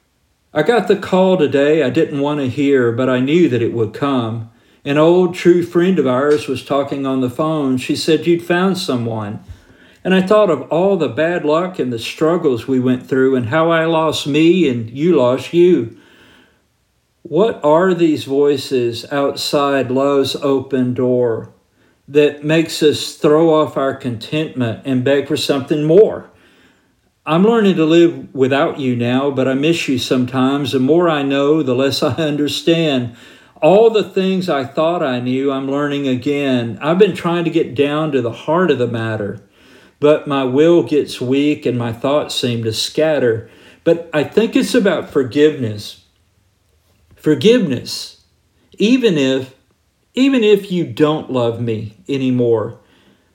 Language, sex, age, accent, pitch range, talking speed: English, male, 50-69, American, 125-160 Hz, 160 wpm